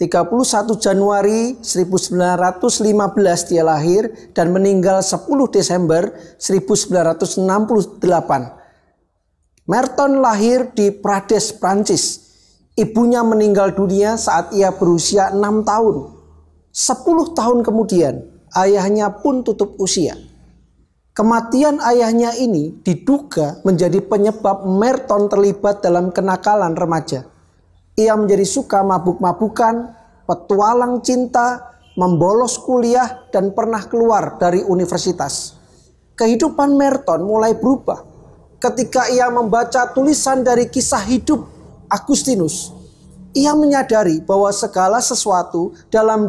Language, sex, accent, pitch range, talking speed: Indonesian, male, native, 185-240 Hz, 95 wpm